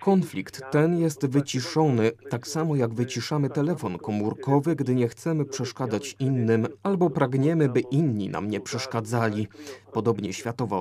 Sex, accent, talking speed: male, native, 135 wpm